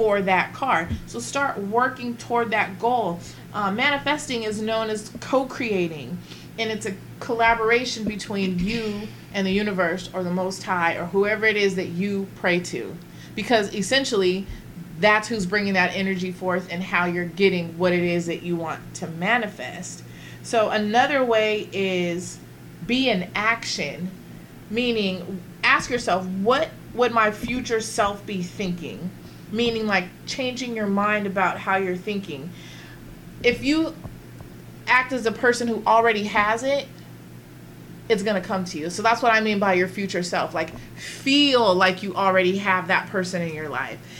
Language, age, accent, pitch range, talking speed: English, 30-49, American, 175-220 Hz, 160 wpm